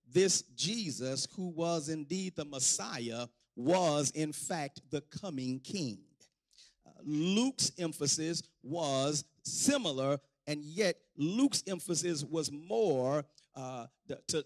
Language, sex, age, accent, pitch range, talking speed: English, male, 50-69, American, 135-180 Hz, 110 wpm